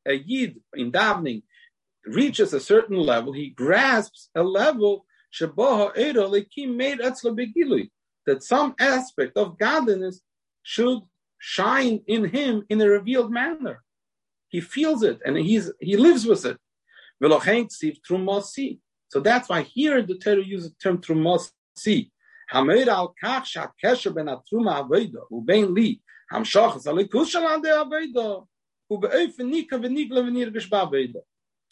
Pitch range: 175-260 Hz